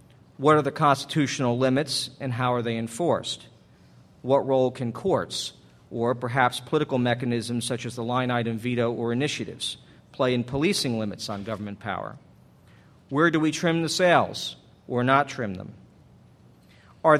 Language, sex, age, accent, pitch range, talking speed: English, male, 50-69, American, 120-145 Hz, 155 wpm